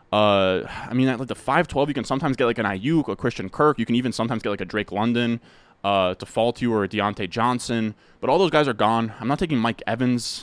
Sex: male